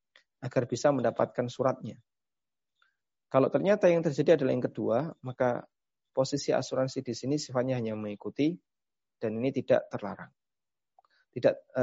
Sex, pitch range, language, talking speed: male, 120-150 Hz, Indonesian, 120 wpm